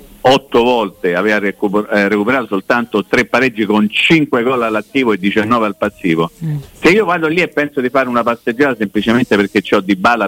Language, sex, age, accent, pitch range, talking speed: Italian, male, 50-69, native, 100-140 Hz, 185 wpm